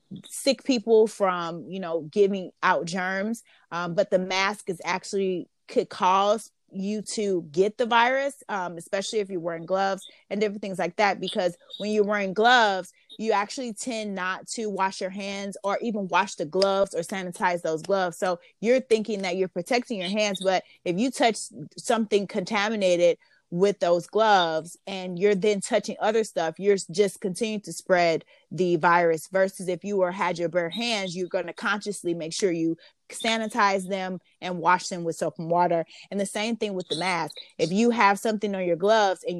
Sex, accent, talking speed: female, American, 185 wpm